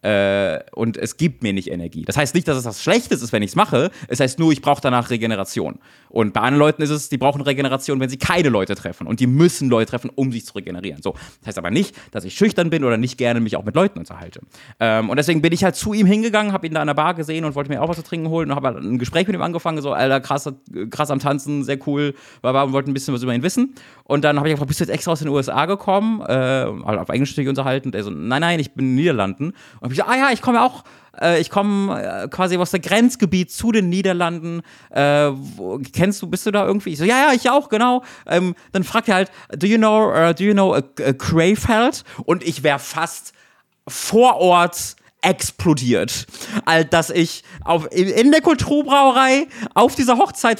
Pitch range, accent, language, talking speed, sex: 140-205 Hz, German, German, 245 wpm, male